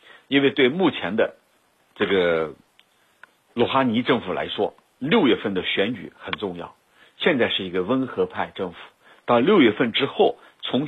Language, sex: Chinese, male